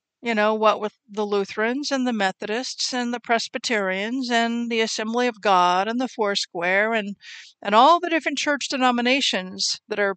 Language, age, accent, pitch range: English, 50-69, American, 205-250 Hz